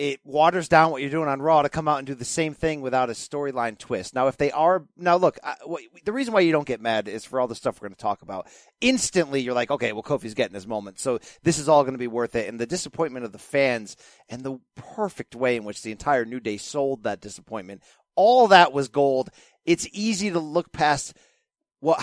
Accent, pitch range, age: American, 120-175 Hz, 30-49